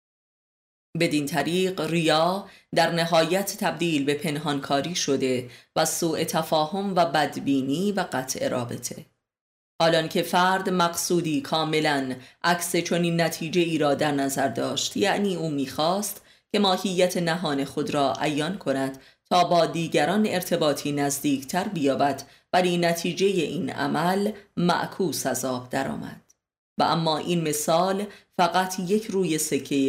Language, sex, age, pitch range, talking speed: Persian, female, 30-49, 145-180 Hz, 120 wpm